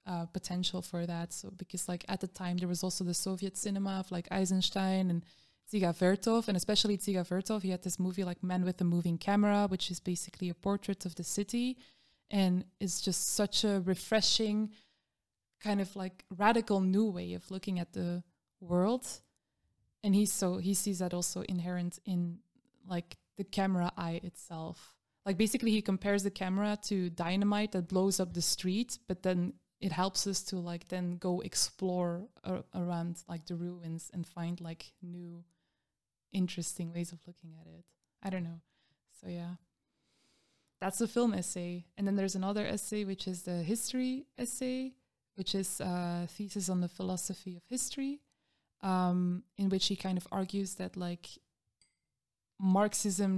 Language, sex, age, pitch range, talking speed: English, female, 20-39, 175-200 Hz, 170 wpm